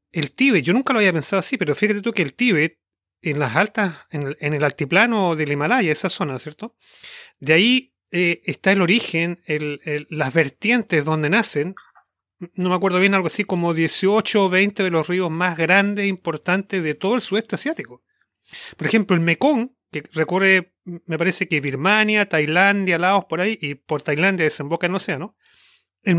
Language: Spanish